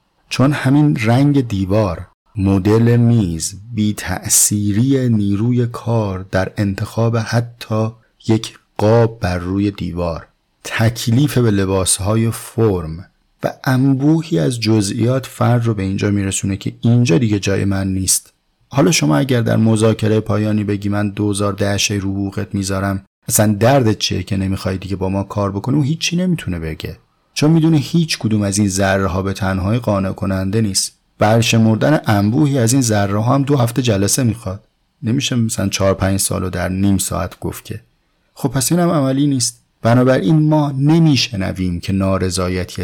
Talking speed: 150 wpm